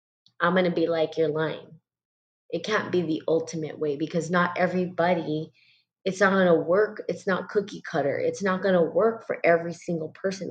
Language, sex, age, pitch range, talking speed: English, female, 30-49, 170-200 Hz, 195 wpm